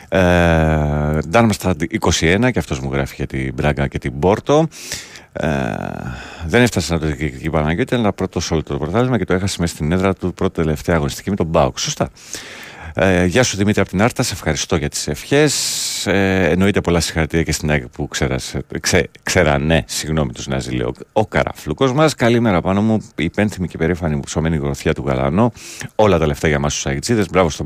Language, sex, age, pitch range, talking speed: Greek, male, 40-59, 75-100 Hz, 195 wpm